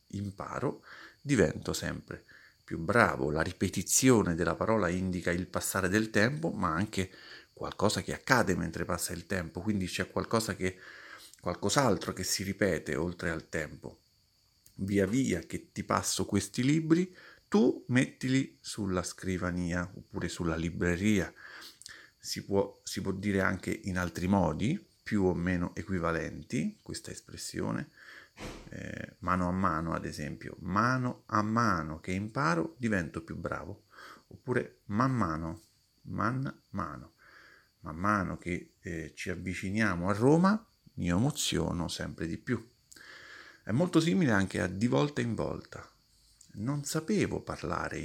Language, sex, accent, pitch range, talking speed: Italian, male, native, 90-115 Hz, 135 wpm